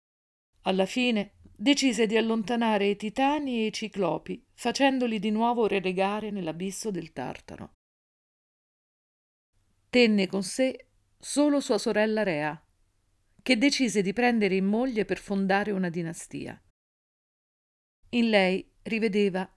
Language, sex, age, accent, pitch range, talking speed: Italian, female, 50-69, native, 180-235 Hz, 115 wpm